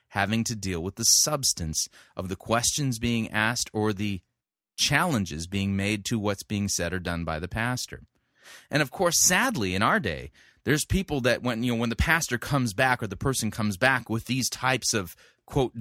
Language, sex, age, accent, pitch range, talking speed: English, male, 30-49, American, 95-130 Hz, 200 wpm